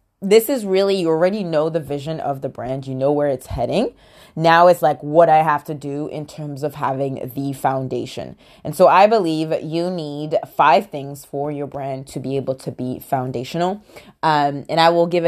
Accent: American